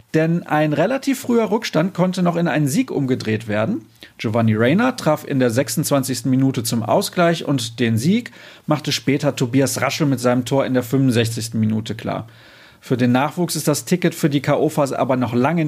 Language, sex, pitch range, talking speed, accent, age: German, male, 125-170 Hz, 185 wpm, German, 40-59